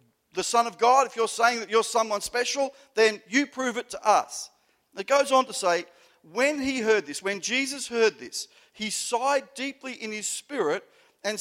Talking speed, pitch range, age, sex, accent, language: 195 wpm, 205-275 Hz, 50-69, male, Australian, English